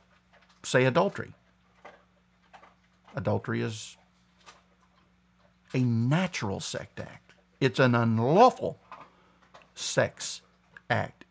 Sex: male